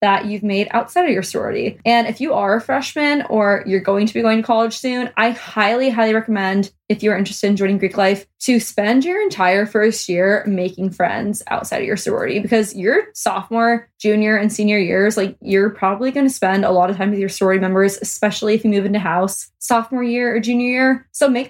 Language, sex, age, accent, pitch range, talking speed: English, female, 20-39, American, 195-235 Hz, 220 wpm